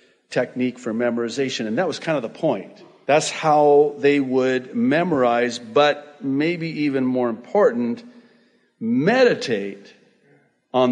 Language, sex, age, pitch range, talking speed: English, male, 60-79, 120-145 Hz, 120 wpm